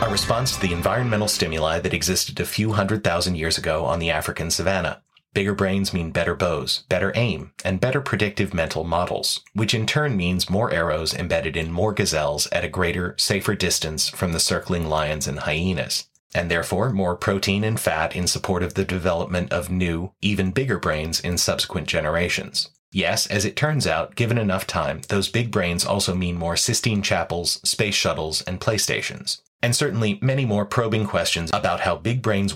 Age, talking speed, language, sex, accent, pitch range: 30-49, 185 wpm, English, male, American, 85-105 Hz